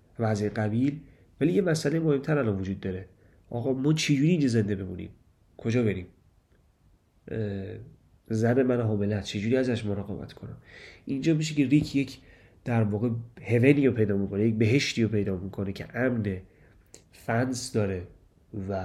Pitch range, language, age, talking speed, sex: 100-125 Hz, Persian, 30-49, 140 wpm, male